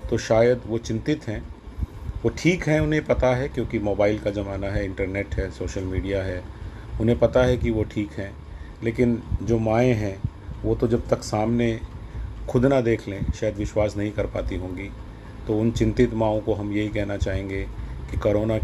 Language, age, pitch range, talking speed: Hindi, 40-59, 100-115 Hz, 185 wpm